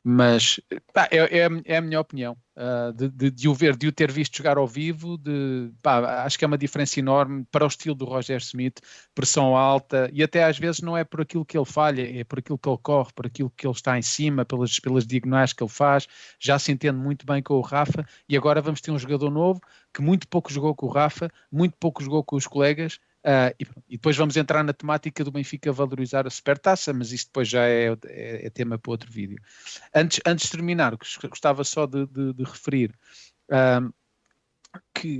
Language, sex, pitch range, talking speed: Portuguese, male, 130-160 Hz, 210 wpm